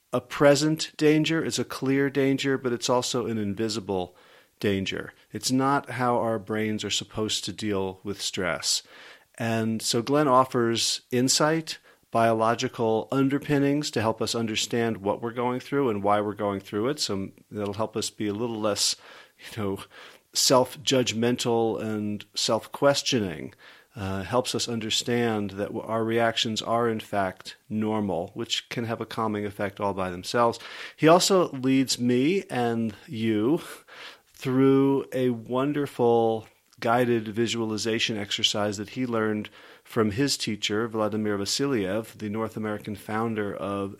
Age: 40-59